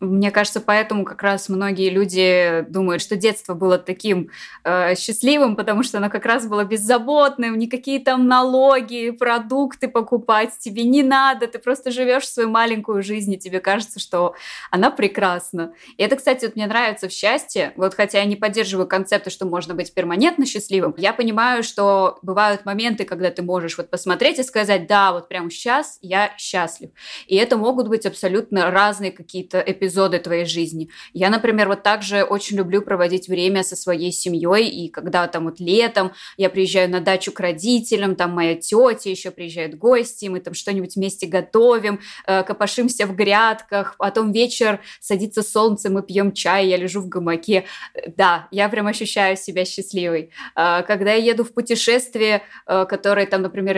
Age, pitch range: 20-39, 185-225 Hz